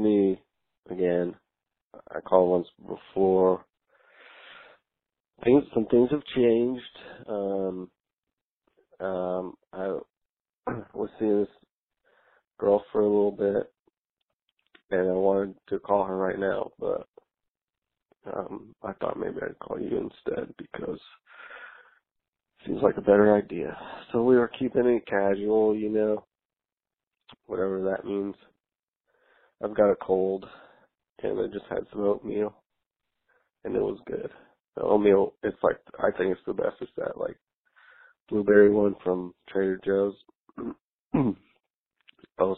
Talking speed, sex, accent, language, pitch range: 125 wpm, male, American, English, 95-125 Hz